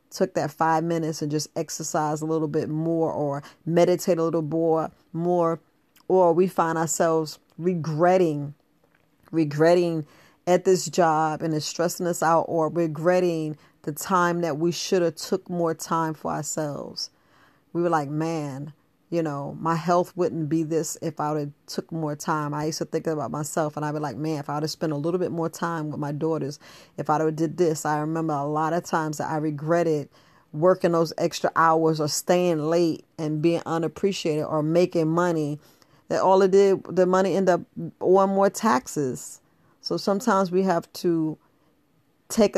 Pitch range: 155-175 Hz